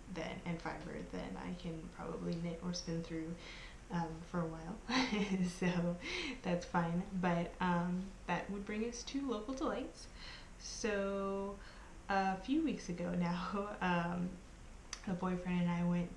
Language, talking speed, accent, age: English, 145 wpm, American, 20-39